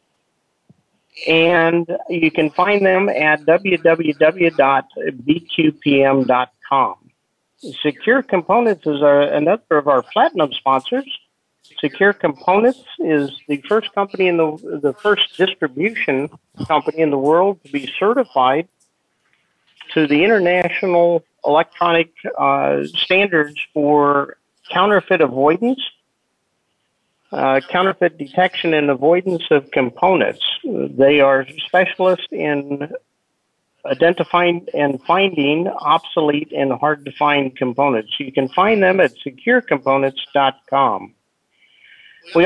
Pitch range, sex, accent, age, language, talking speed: 145-190 Hz, male, American, 50-69, English, 95 wpm